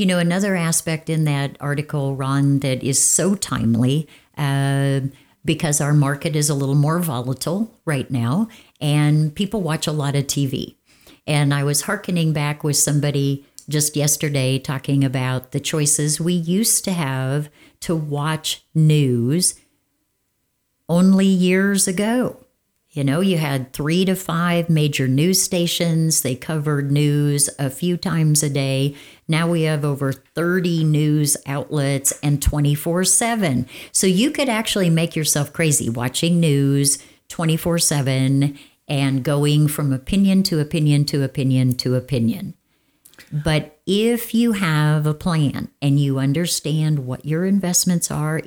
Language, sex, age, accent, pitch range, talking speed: English, female, 60-79, American, 140-170 Hz, 140 wpm